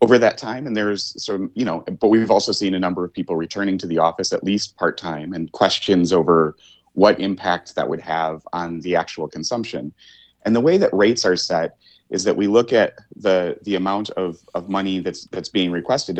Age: 30-49